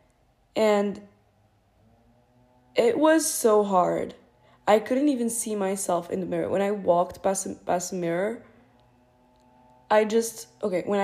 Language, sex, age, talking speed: English, female, 20-39, 130 wpm